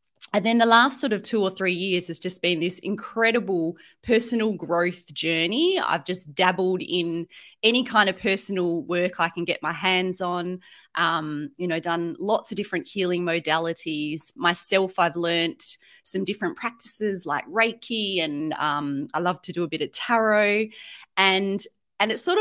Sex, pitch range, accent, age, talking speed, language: female, 170-225 Hz, Australian, 30-49, 170 wpm, English